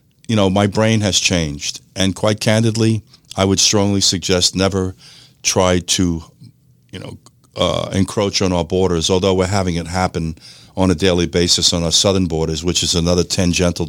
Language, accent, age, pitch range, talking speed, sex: English, American, 50-69, 90-110 Hz, 175 wpm, male